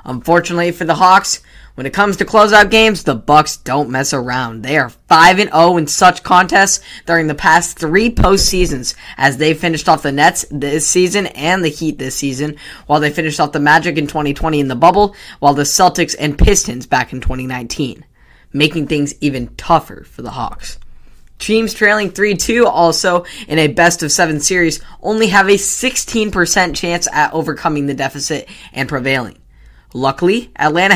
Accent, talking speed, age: American, 165 wpm, 10-29